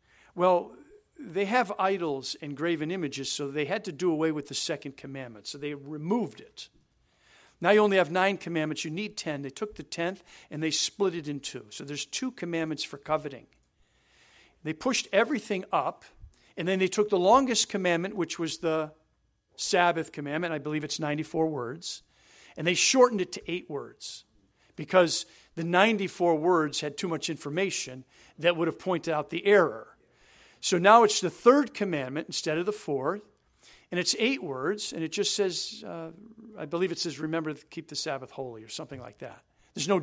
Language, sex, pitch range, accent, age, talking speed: English, male, 155-200 Hz, American, 50-69, 185 wpm